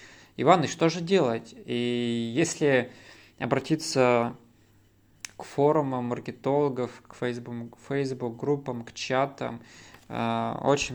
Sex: male